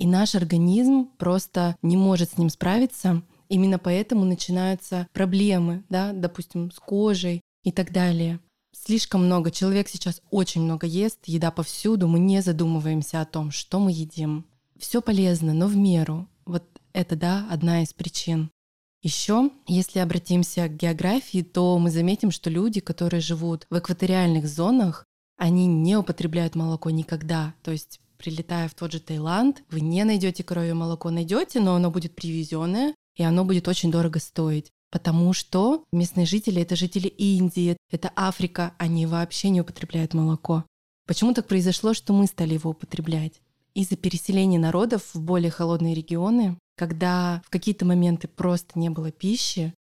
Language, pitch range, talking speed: Russian, 165-190 Hz, 155 wpm